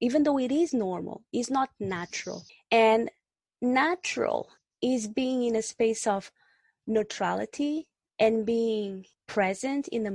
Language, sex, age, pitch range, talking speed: English, female, 20-39, 210-265 Hz, 130 wpm